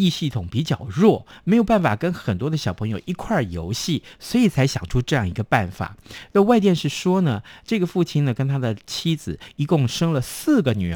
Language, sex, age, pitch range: Chinese, male, 50-69, 115-180 Hz